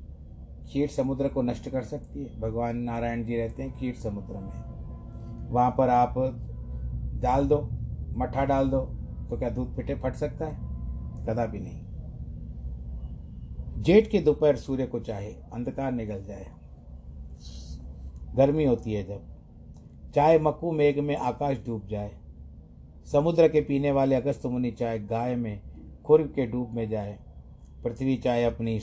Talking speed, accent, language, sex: 145 wpm, native, Hindi, male